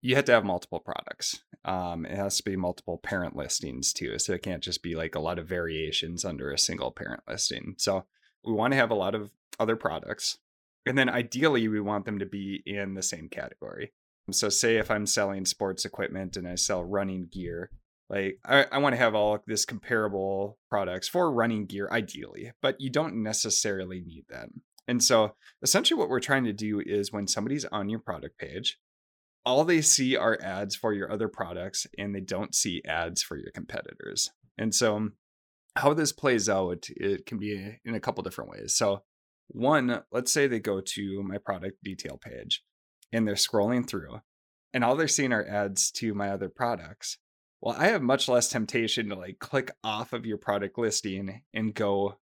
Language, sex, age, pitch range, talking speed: English, male, 30-49, 95-115 Hz, 195 wpm